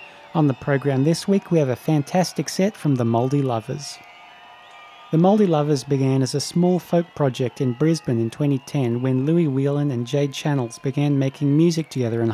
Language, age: English, 30-49